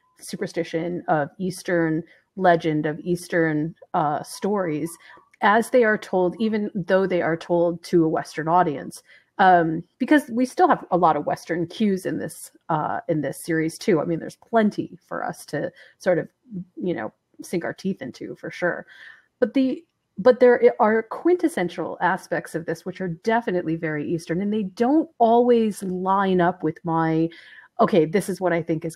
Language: English